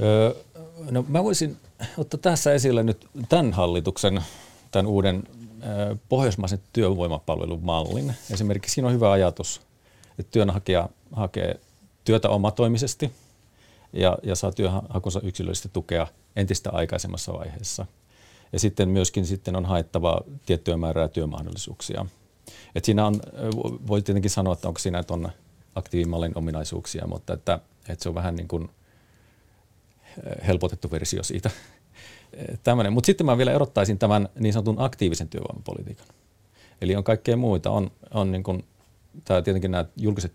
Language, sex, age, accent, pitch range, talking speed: Finnish, male, 40-59, native, 90-110 Hz, 130 wpm